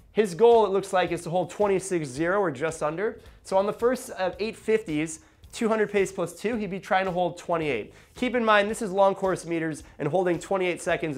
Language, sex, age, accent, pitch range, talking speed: English, male, 20-39, American, 155-195 Hz, 215 wpm